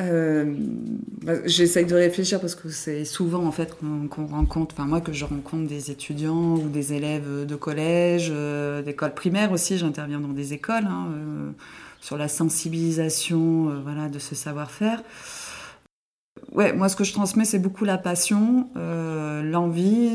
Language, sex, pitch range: French, female, 150-185 Hz